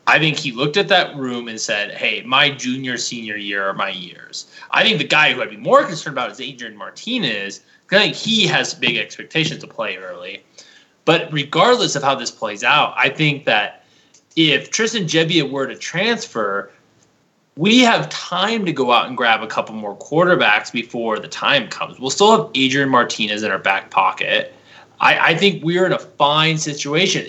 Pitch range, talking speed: 125-175 Hz, 195 wpm